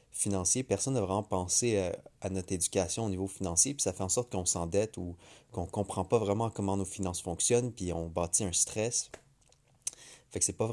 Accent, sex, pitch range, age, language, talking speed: Canadian, male, 90-110 Hz, 30-49, French, 205 wpm